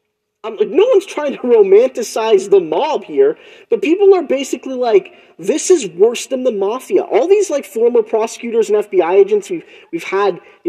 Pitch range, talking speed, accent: 285-415 Hz, 180 wpm, American